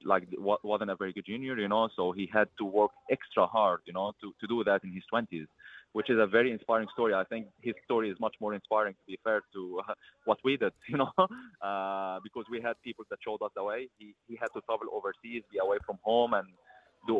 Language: English